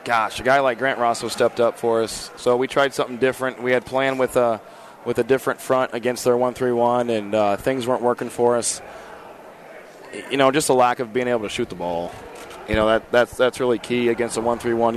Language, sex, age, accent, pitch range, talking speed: English, male, 20-39, American, 110-125 Hz, 230 wpm